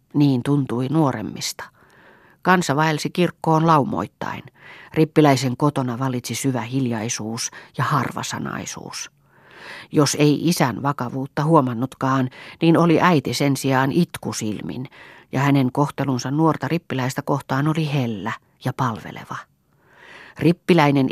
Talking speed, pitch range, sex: 100 wpm, 125-155 Hz, female